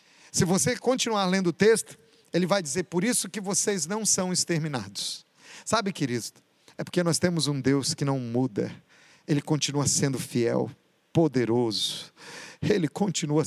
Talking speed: 150 wpm